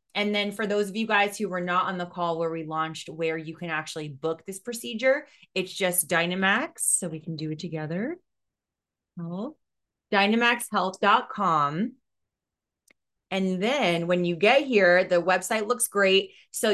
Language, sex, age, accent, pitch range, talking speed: English, female, 20-39, American, 180-205 Hz, 160 wpm